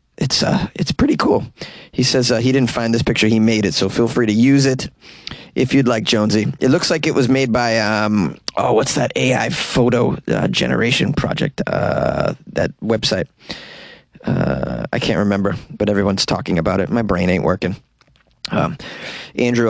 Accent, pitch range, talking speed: American, 105-125 Hz, 185 wpm